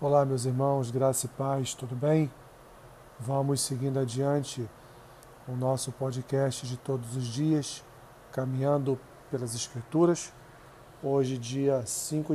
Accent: Brazilian